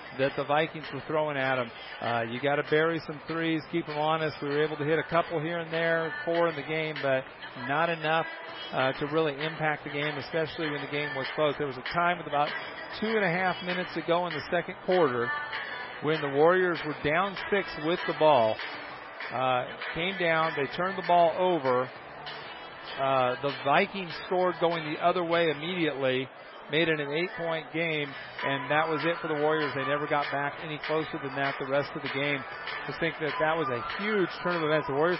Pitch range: 145-165 Hz